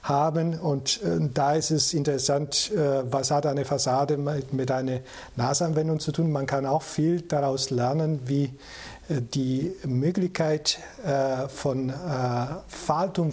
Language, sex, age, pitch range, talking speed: German, male, 50-69, 130-155 Hz, 145 wpm